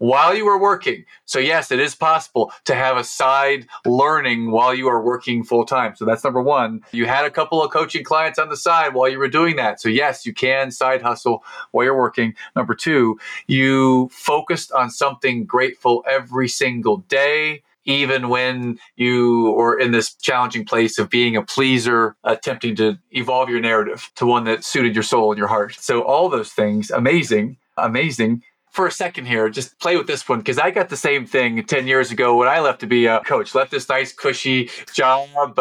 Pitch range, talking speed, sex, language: 115-140 Hz, 200 wpm, male, English